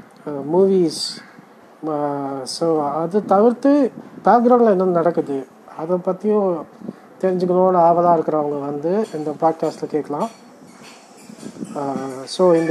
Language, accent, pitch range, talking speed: Tamil, native, 155-205 Hz, 85 wpm